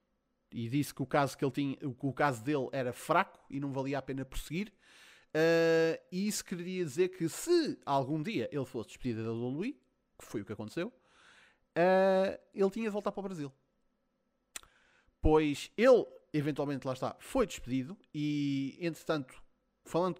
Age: 20-39